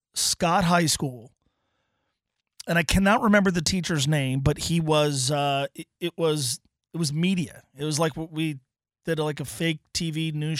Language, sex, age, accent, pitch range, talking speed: English, male, 30-49, American, 140-180 Hz, 175 wpm